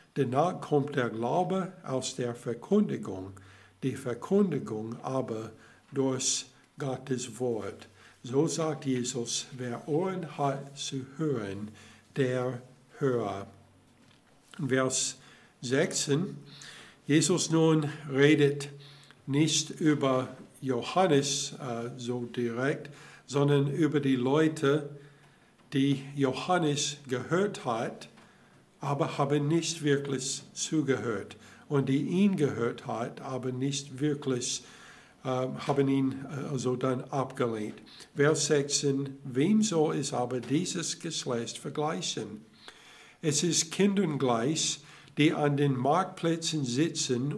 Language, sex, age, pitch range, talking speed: German, male, 60-79, 125-150 Hz, 100 wpm